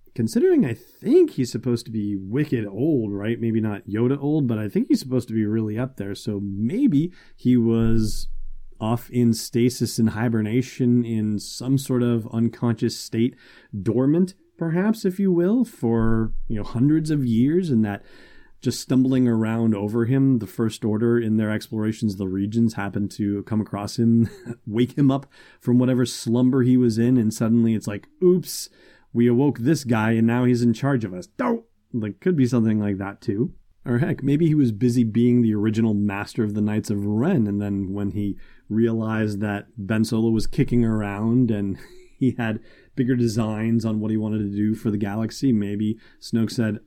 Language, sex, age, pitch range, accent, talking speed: English, male, 30-49, 105-125 Hz, American, 190 wpm